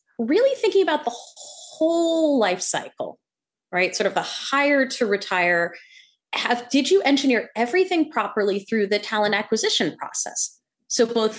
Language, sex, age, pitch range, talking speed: English, female, 30-49, 210-315 Hz, 140 wpm